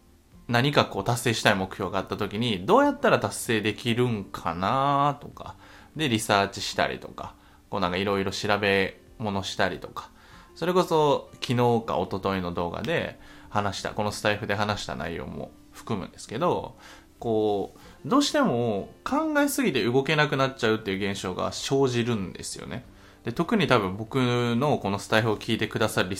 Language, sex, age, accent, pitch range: Japanese, male, 20-39, native, 100-155 Hz